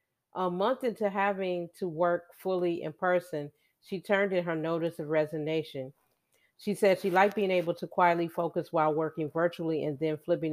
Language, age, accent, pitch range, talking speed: English, 40-59, American, 155-190 Hz, 175 wpm